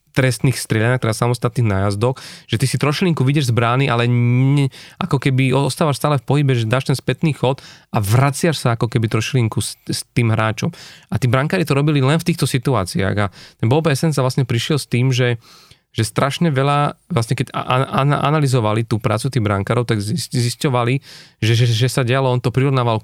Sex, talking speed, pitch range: male, 195 wpm, 115-135 Hz